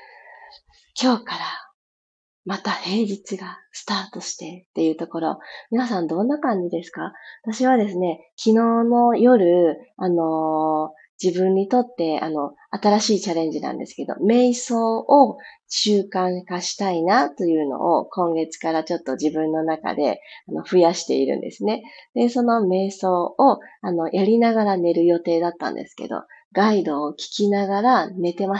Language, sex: Japanese, female